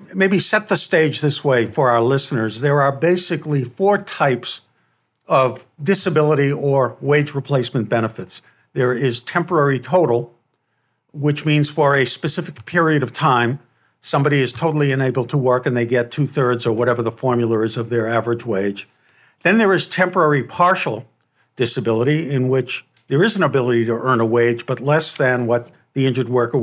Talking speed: 165 wpm